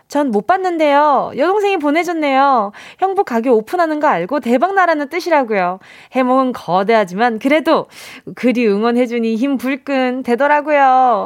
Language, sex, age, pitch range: Korean, female, 20-39, 220-325 Hz